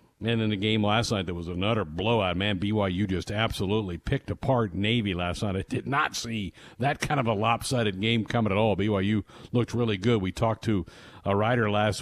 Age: 50-69